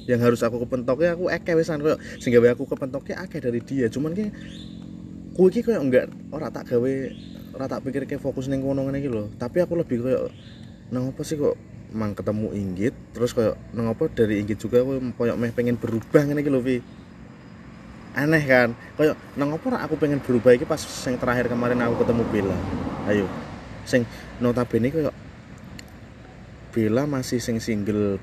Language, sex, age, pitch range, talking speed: Indonesian, male, 20-39, 110-155 Hz, 170 wpm